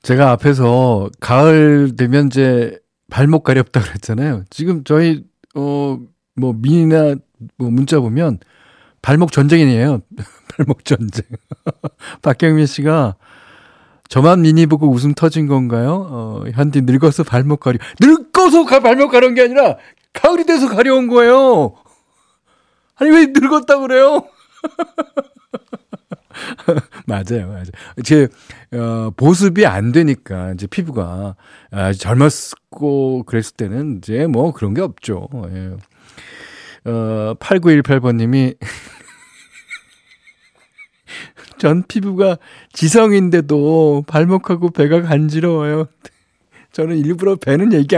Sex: male